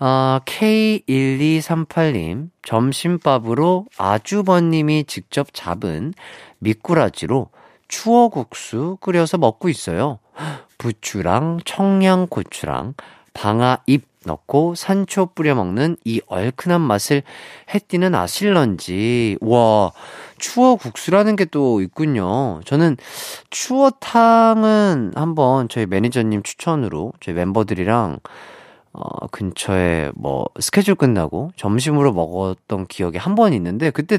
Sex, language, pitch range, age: male, Korean, 115-180 Hz, 40-59